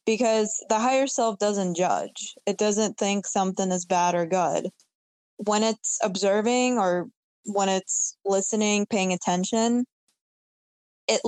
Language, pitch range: English, 185-230 Hz